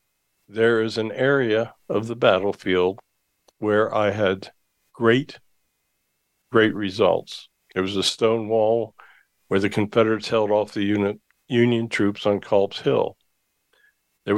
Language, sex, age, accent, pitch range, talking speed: English, male, 60-79, American, 105-115 Hz, 130 wpm